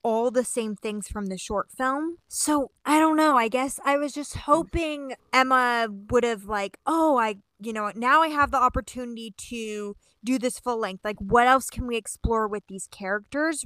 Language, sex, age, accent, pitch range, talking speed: English, female, 20-39, American, 205-255 Hz, 200 wpm